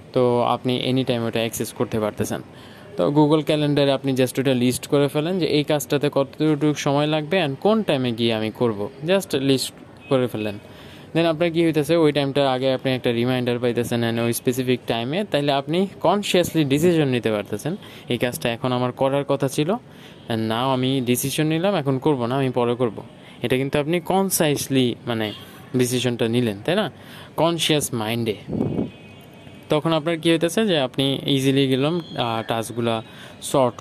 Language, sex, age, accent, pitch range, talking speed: Bengali, male, 20-39, native, 120-145 Hz, 165 wpm